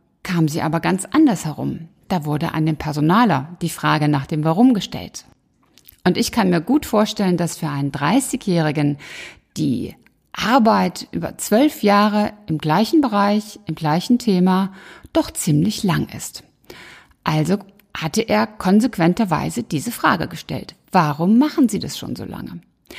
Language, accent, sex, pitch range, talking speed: German, German, female, 180-245 Hz, 145 wpm